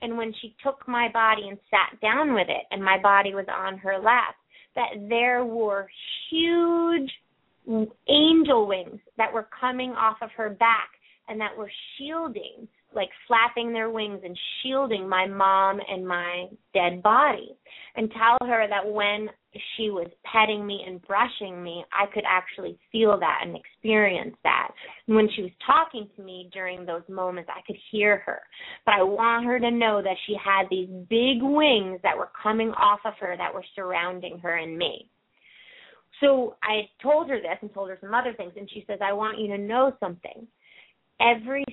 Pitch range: 195-235 Hz